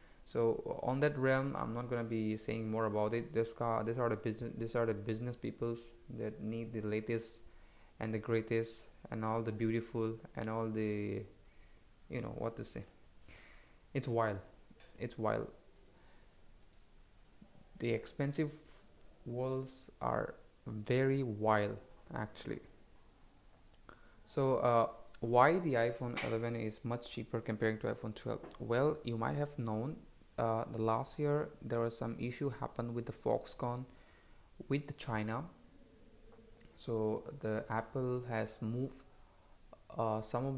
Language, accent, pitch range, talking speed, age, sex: English, Indian, 110-120 Hz, 140 wpm, 20-39, male